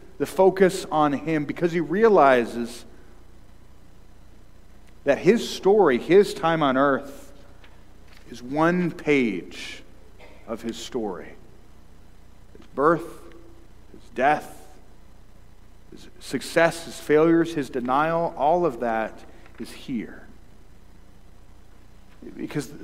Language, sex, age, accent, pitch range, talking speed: English, male, 40-59, American, 105-175 Hz, 95 wpm